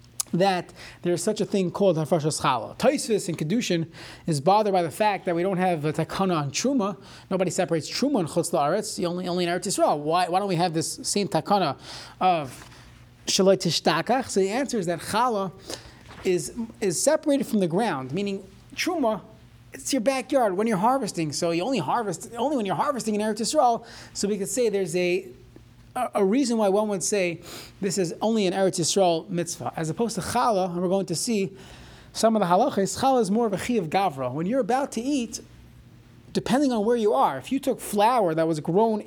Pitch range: 170-215 Hz